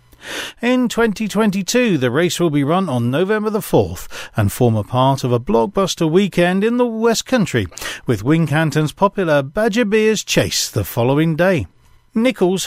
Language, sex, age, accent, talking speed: English, male, 40-59, British, 155 wpm